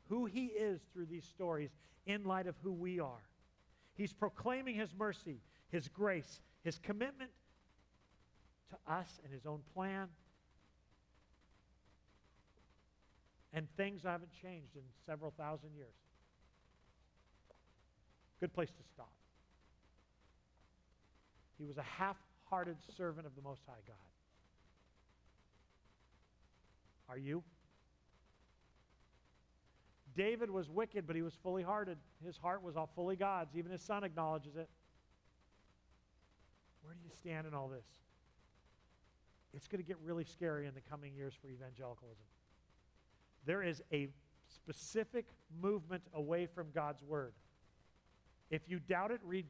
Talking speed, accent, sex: 125 wpm, American, male